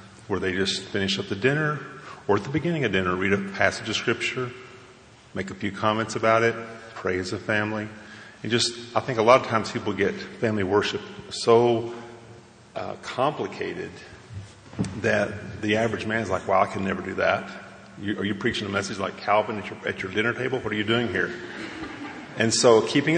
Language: English